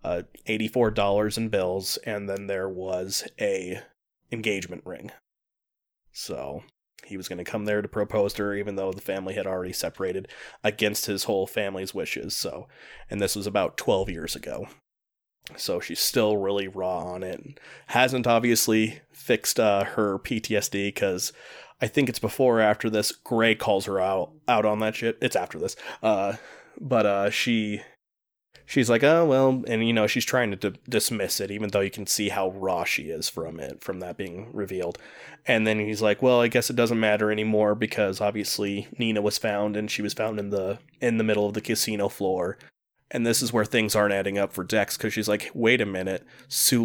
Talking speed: 195 wpm